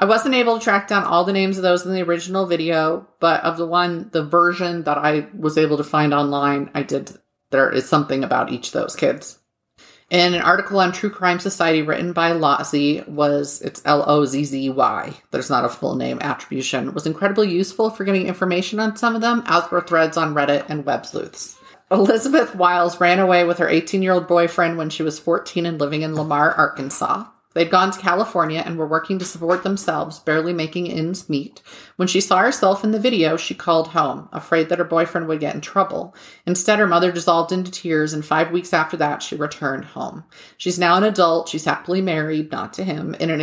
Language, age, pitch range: English, 30-49, 155-185 Hz